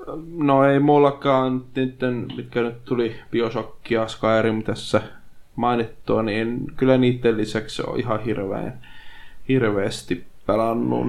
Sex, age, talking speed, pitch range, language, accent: male, 20-39, 110 wpm, 110-125 Hz, Finnish, native